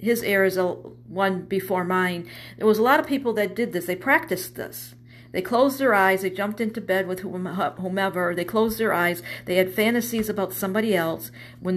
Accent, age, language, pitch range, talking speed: American, 50-69, English, 185-225 Hz, 200 wpm